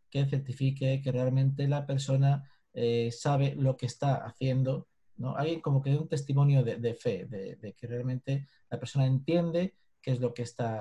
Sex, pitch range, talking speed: male, 120-140 Hz, 185 wpm